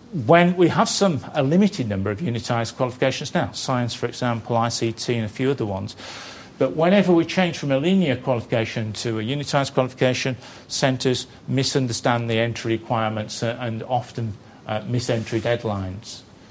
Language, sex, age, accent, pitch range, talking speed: English, male, 40-59, British, 120-150 Hz, 155 wpm